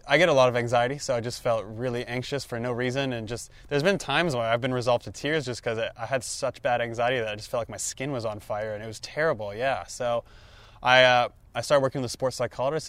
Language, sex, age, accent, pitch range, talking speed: English, male, 20-39, American, 110-125 Hz, 270 wpm